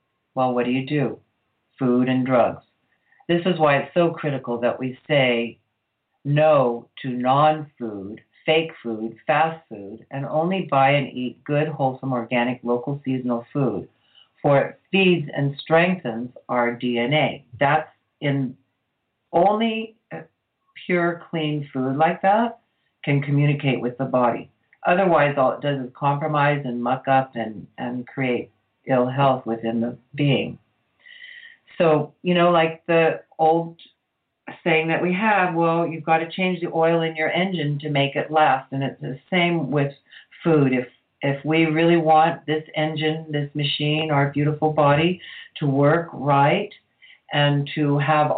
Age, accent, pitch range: 50-69, American, 130-160 Hz